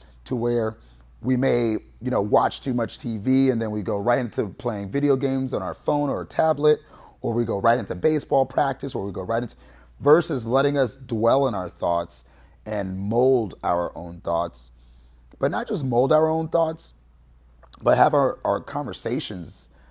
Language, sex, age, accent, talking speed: English, male, 30-49, American, 180 wpm